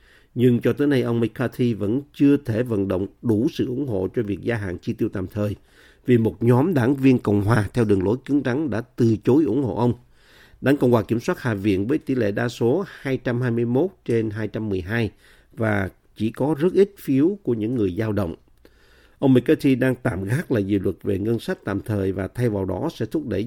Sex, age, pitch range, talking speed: male, 50-69, 105-135 Hz, 220 wpm